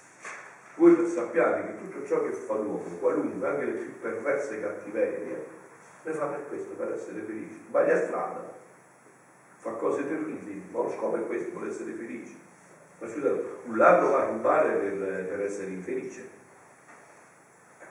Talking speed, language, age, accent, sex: 160 wpm, Italian, 60-79, native, male